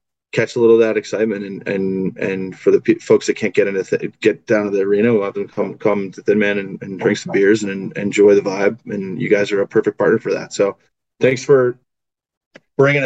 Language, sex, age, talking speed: English, male, 20-39, 250 wpm